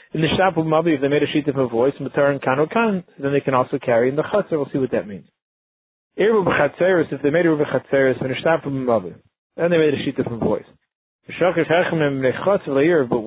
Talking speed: 210 wpm